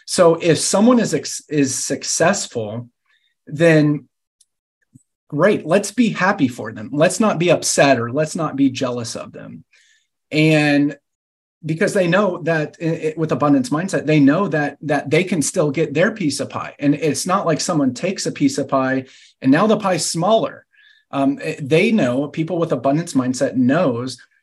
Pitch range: 135-175 Hz